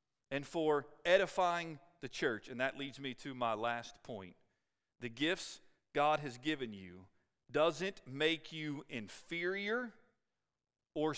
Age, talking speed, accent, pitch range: 40-59, 130 wpm, American, 140-210 Hz